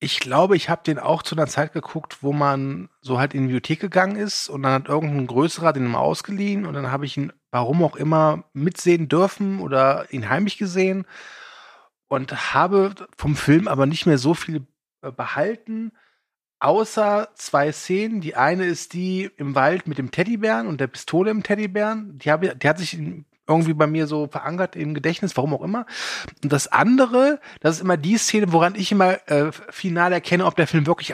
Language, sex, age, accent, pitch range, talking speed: German, male, 30-49, German, 140-190 Hz, 195 wpm